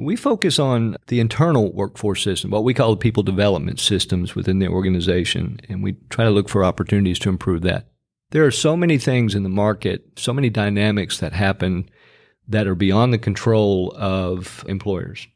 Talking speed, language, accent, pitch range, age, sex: 185 wpm, English, American, 95-115 Hz, 50-69, male